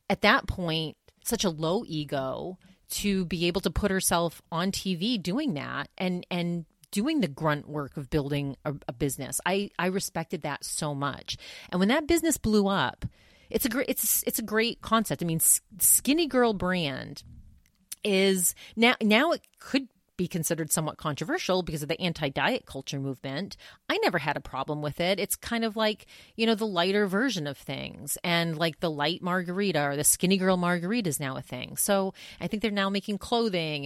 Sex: female